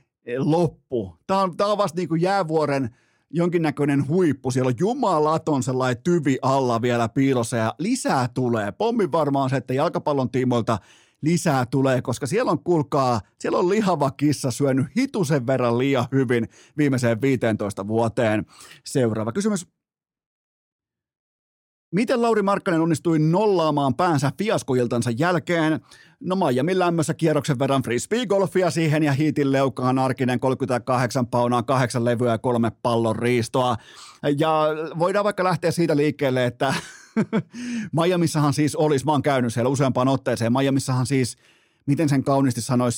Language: Finnish